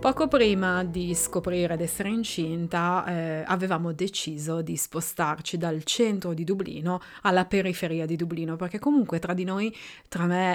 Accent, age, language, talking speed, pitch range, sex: native, 20-39, Italian, 155 wpm, 175-210 Hz, female